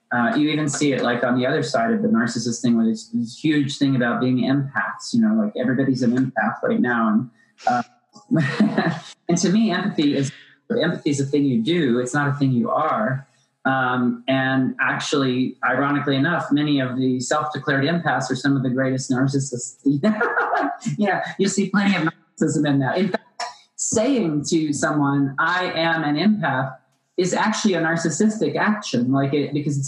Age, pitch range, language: 30-49, 135-165 Hz, English